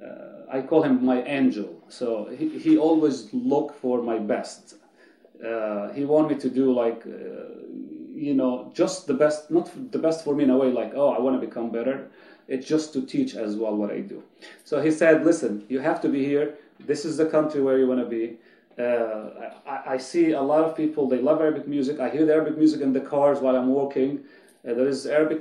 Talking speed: 225 wpm